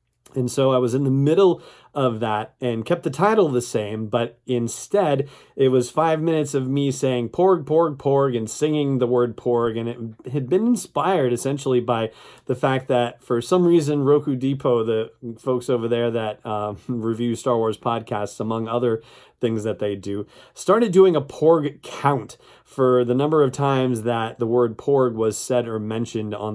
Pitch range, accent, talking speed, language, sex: 115-140 Hz, American, 190 wpm, English, male